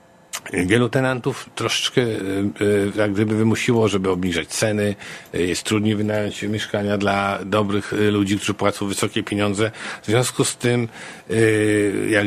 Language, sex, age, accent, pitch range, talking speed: Polish, male, 50-69, native, 100-115 Hz, 120 wpm